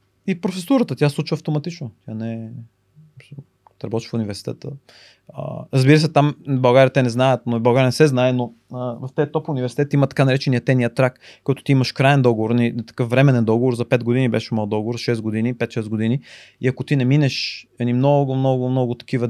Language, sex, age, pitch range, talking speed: Bulgarian, male, 30-49, 115-135 Hz, 200 wpm